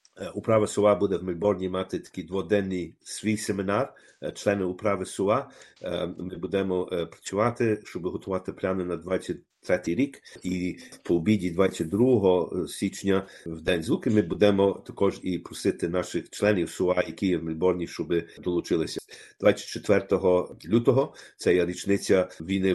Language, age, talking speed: Ukrainian, 50-69, 130 wpm